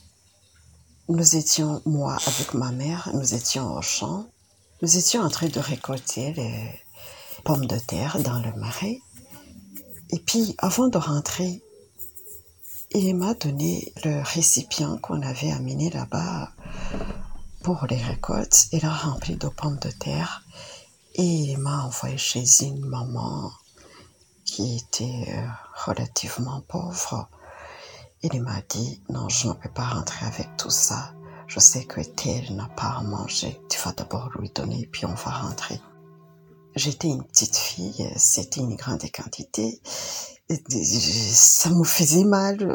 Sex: female